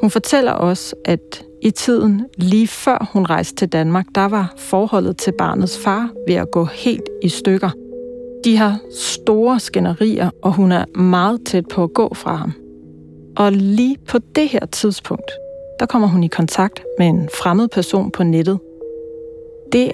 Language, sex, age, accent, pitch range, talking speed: Danish, female, 40-59, native, 175-245 Hz, 170 wpm